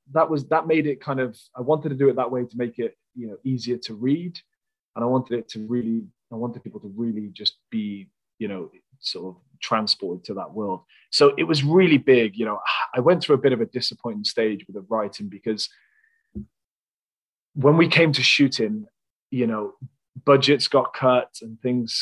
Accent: British